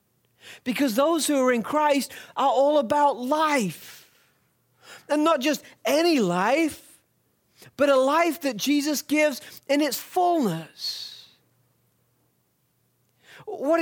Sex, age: male, 40-59